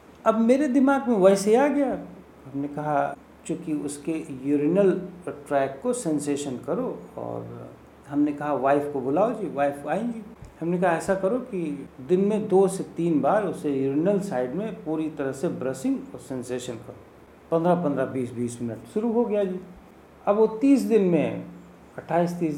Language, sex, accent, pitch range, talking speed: Hindi, male, native, 155-230 Hz, 170 wpm